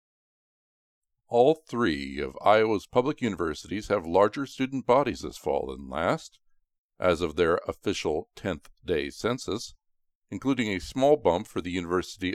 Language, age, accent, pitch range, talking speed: English, 50-69, American, 85-130 Hz, 130 wpm